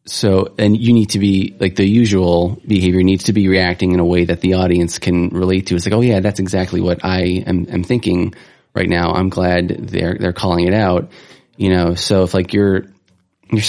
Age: 30-49